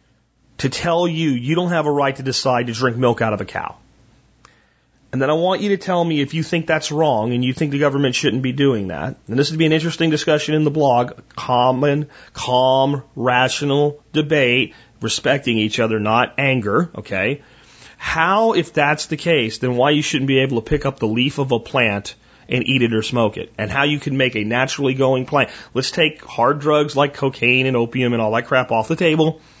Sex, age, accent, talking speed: male, 40-59, American, 220 wpm